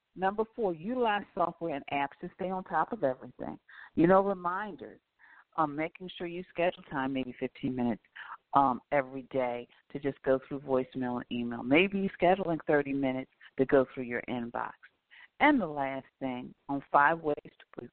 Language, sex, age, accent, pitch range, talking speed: English, female, 50-69, American, 130-175 Hz, 175 wpm